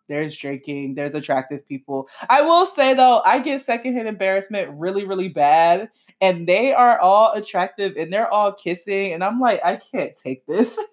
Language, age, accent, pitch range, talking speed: English, 20-39, American, 165-240 Hz, 175 wpm